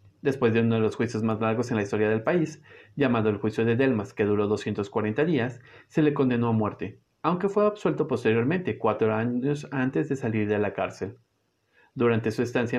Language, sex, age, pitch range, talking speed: Spanish, male, 40-59, 110-135 Hz, 195 wpm